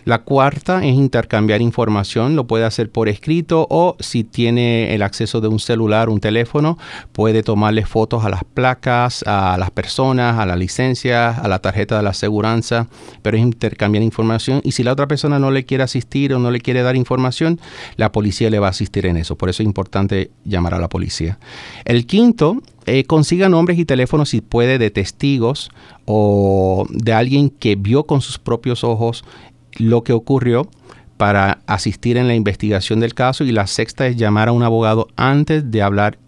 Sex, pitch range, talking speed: male, 105-130 Hz, 190 wpm